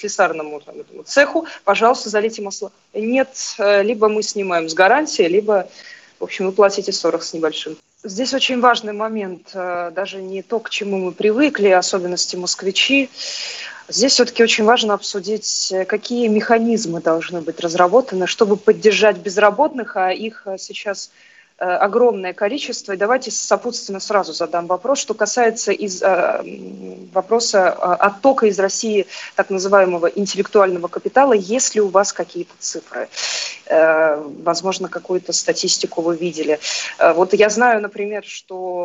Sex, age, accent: female, 20-39, native